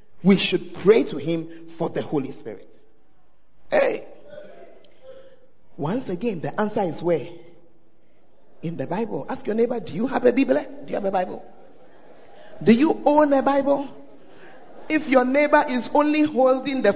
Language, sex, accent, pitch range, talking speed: English, male, Nigerian, 205-305 Hz, 155 wpm